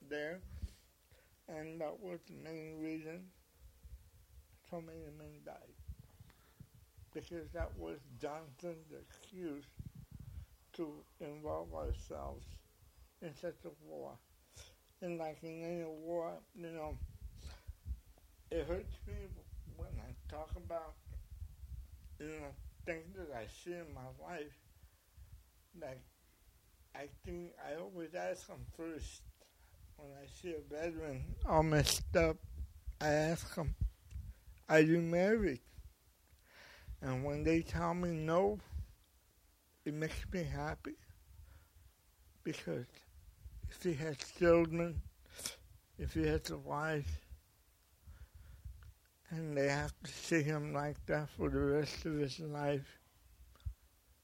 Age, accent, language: 60-79, American, English